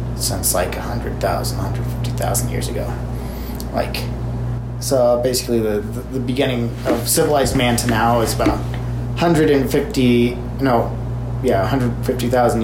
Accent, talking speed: American, 150 wpm